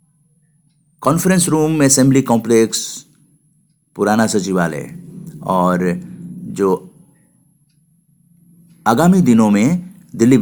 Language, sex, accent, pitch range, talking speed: Hindi, male, native, 110-160 Hz, 70 wpm